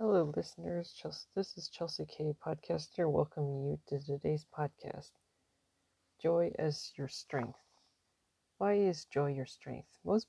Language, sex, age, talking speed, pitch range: English, female, 40-59, 130 wpm, 145-170 Hz